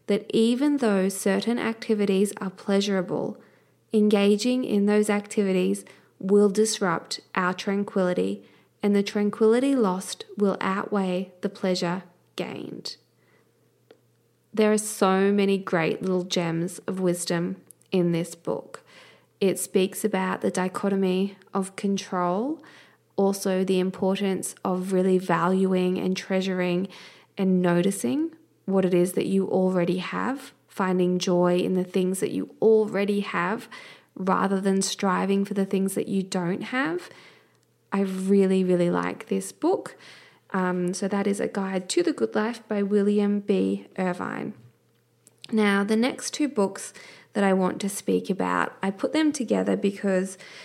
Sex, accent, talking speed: female, Australian, 135 wpm